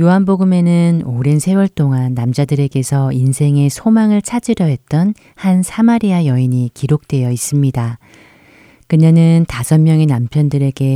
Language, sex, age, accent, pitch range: Korean, female, 30-49, native, 130-155 Hz